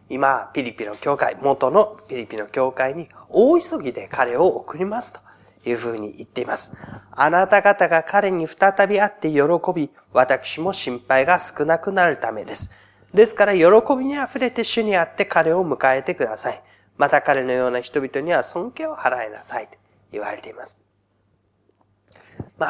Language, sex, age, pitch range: Japanese, male, 30-49, 135-215 Hz